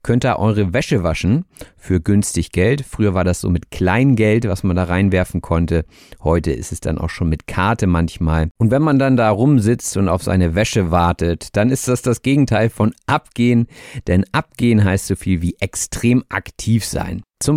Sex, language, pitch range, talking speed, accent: male, German, 90-115 Hz, 190 wpm, German